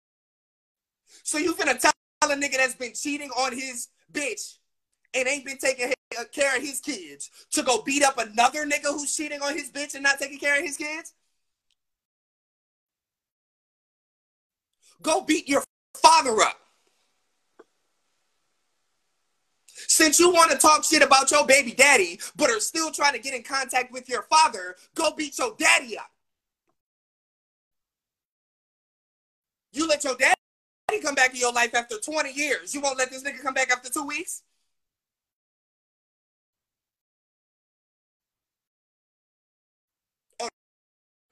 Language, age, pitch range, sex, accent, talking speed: English, 20-39, 265-320 Hz, male, American, 140 wpm